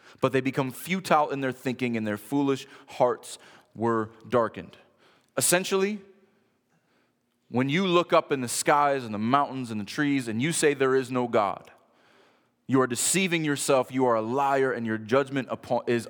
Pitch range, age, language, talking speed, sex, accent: 105-140 Hz, 30-49, English, 170 wpm, male, American